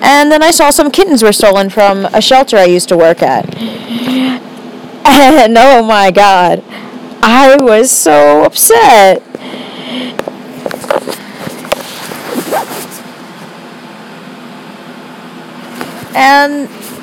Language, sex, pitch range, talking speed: English, female, 225-315 Hz, 90 wpm